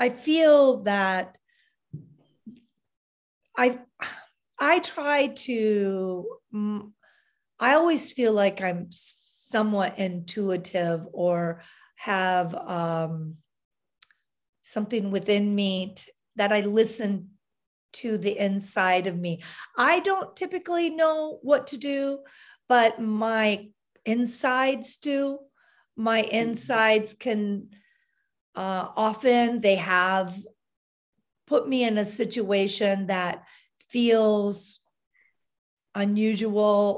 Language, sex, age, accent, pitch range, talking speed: English, female, 50-69, American, 190-255 Hz, 90 wpm